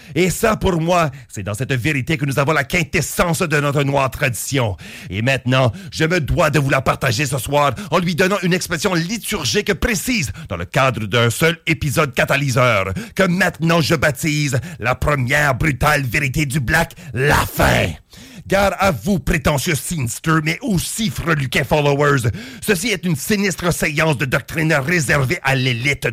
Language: English